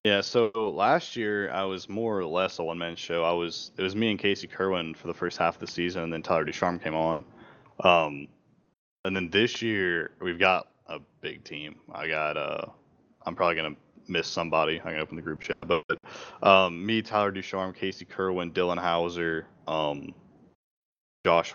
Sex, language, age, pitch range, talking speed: male, English, 20-39, 80-100 Hz, 190 wpm